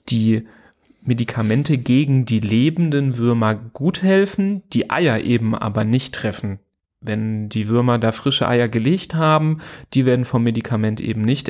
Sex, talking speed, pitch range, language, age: male, 145 wpm, 110-135 Hz, German, 30-49